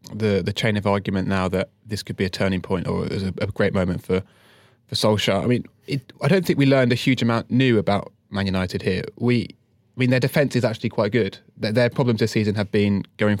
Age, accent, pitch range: 20-39, British, 95-110 Hz